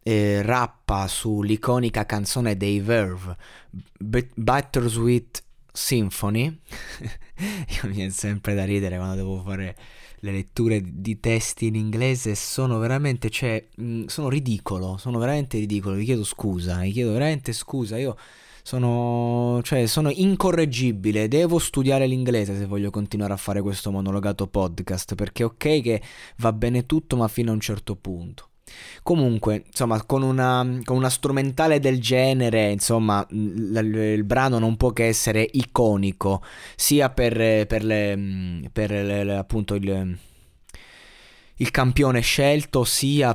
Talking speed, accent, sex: 140 wpm, native, male